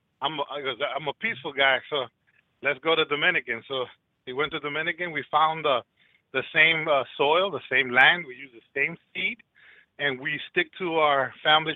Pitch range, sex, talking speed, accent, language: 140-175 Hz, male, 195 wpm, American, English